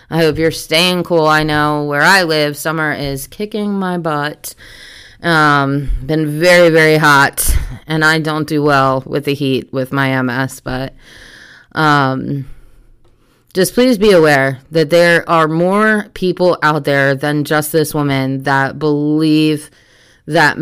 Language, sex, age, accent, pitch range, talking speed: English, female, 20-39, American, 140-170 Hz, 150 wpm